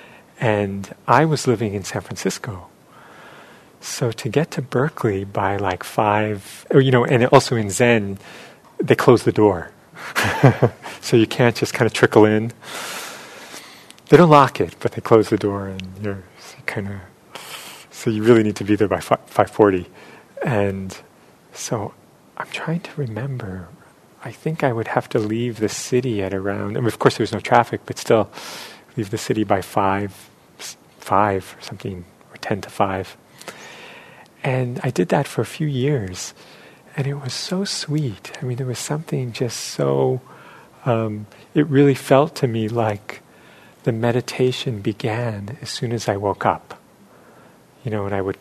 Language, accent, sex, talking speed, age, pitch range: English, American, male, 165 wpm, 30-49, 100-125 Hz